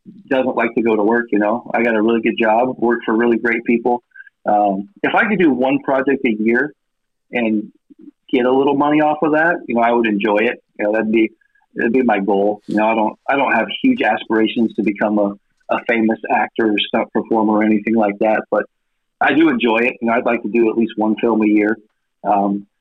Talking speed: 240 wpm